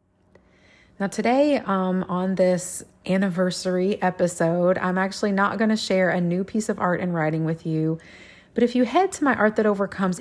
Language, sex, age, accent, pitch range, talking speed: English, female, 30-49, American, 165-195 Hz, 180 wpm